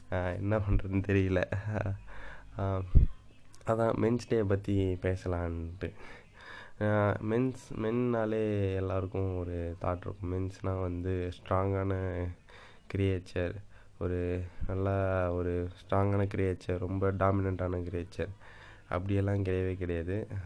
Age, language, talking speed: 20-39, Tamil, 80 wpm